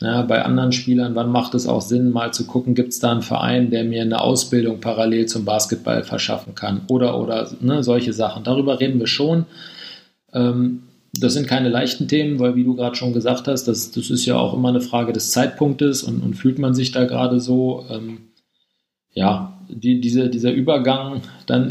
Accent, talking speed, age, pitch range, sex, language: German, 190 wpm, 40-59, 120-130 Hz, male, German